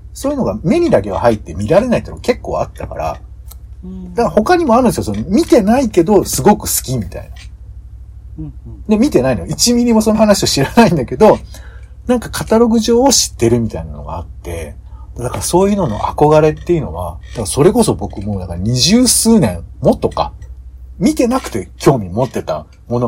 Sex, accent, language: male, native, Japanese